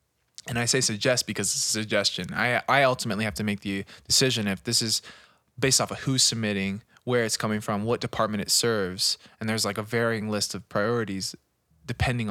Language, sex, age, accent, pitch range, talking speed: English, male, 20-39, American, 100-120 Hz, 200 wpm